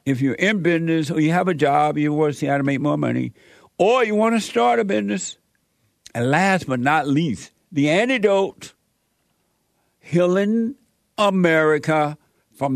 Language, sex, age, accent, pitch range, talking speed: English, male, 60-79, American, 125-165 Hz, 165 wpm